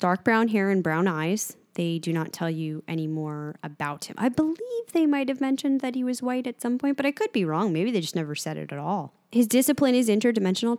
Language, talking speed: English, 250 wpm